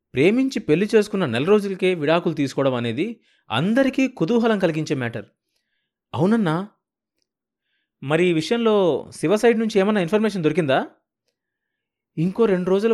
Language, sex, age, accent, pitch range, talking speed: Telugu, male, 30-49, native, 130-205 Hz, 110 wpm